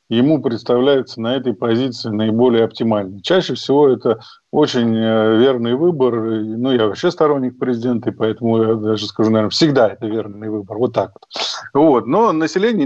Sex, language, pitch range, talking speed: male, Russian, 120-160 Hz, 155 wpm